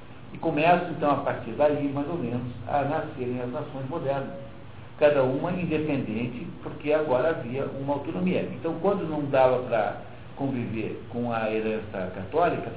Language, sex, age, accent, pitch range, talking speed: Portuguese, male, 60-79, Brazilian, 120-160 Hz, 155 wpm